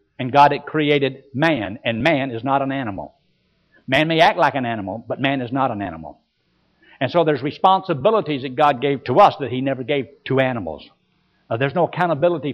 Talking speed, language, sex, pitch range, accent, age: 200 wpm, English, male, 135-180 Hz, American, 60-79